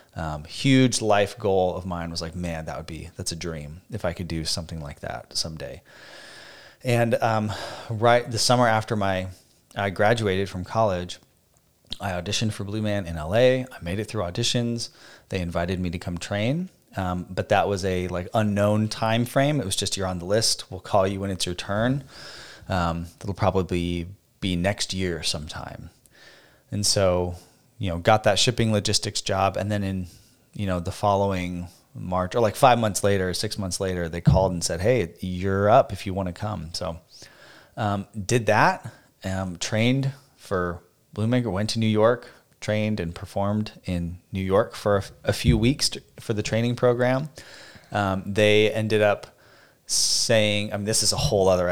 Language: English